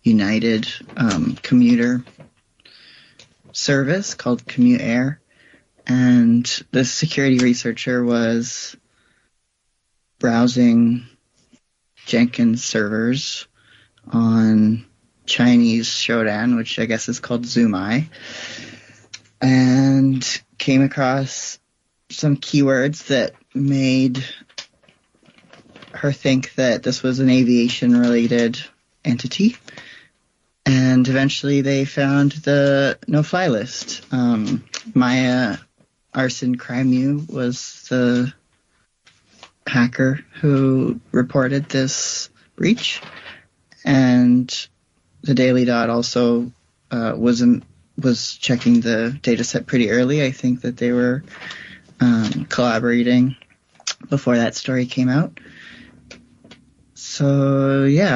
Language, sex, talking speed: English, male, 90 wpm